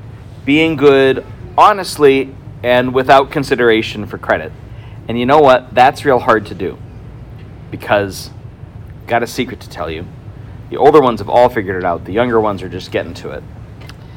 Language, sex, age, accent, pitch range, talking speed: English, male, 40-59, American, 115-150 Hz, 170 wpm